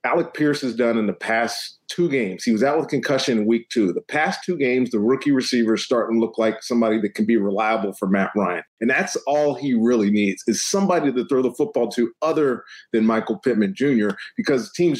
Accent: American